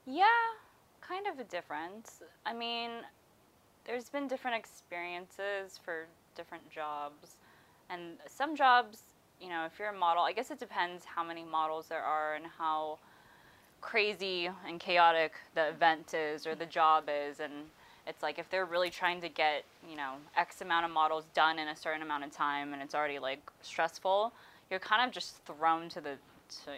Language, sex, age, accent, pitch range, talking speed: English, female, 20-39, American, 155-205 Hz, 175 wpm